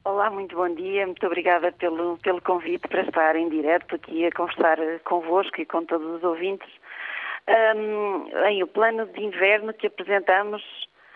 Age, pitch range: 40-59, 180-220 Hz